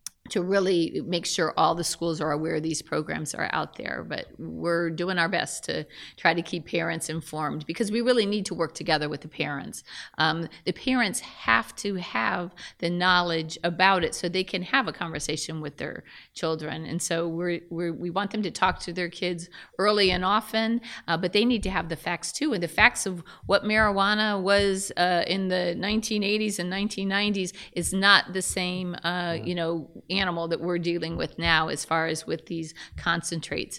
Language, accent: English, American